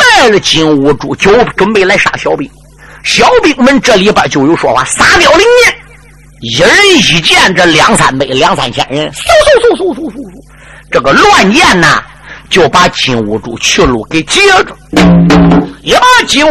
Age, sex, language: 50-69, male, Chinese